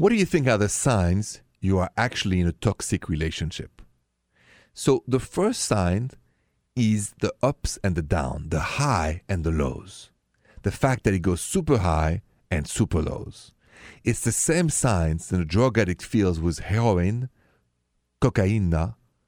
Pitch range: 85-110 Hz